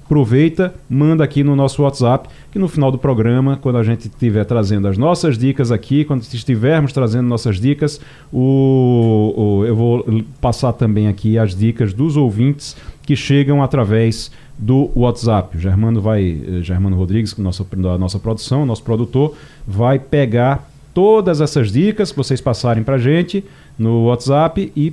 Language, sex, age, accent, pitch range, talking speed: Portuguese, male, 40-59, Brazilian, 110-145 Hz, 160 wpm